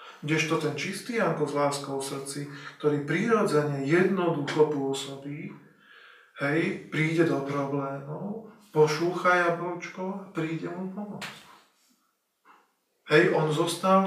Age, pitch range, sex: 40-59, 140-170 Hz, male